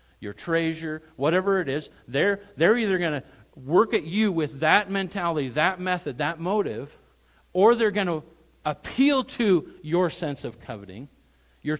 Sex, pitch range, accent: male, 100-155 Hz, American